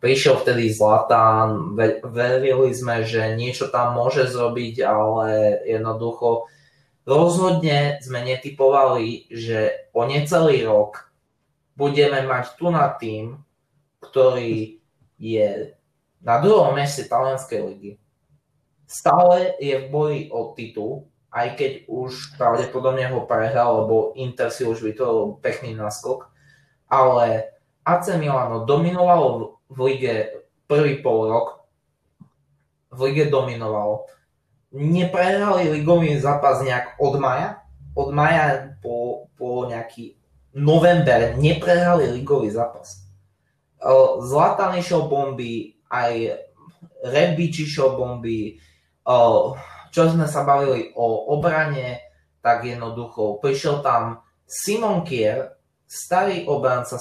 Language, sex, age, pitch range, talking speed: Slovak, male, 20-39, 115-150 Hz, 100 wpm